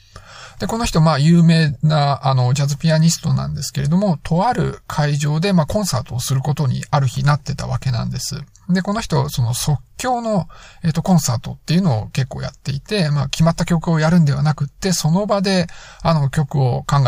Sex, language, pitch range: male, Japanese, 130-170 Hz